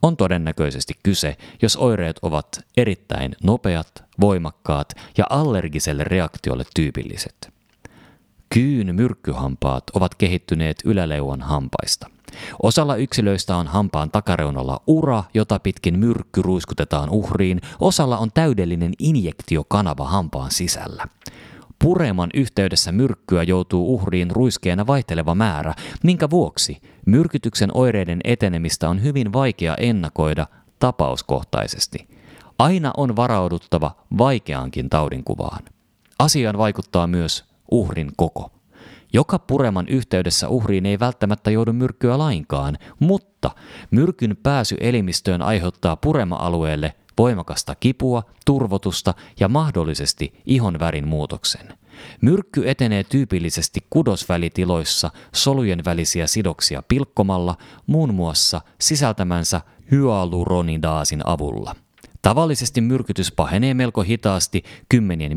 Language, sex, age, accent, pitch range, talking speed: Finnish, male, 30-49, native, 85-120 Hz, 95 wpm